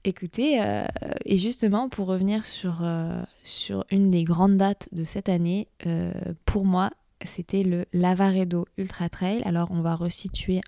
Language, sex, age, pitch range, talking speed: French, female, 20-39, 170-195 Hz, 150 wpm